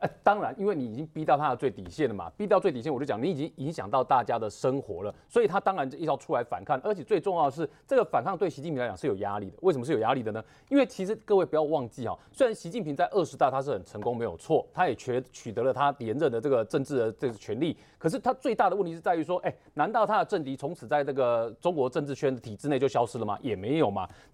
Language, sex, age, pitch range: Chinese, male, 30-49, 135-205 Hz